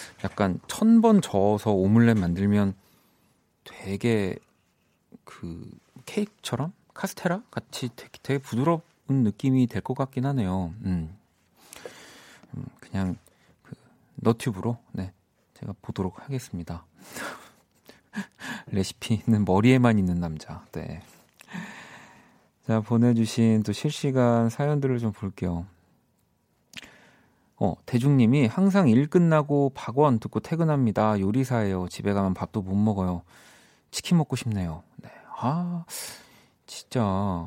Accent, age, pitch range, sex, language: native, 40-59, 95-135 Hz, male, Korean